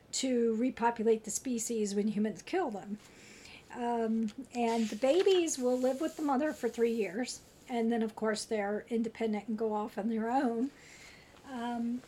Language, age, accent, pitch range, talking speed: English, 50-69, American, 225-270 Hz, 165 wpm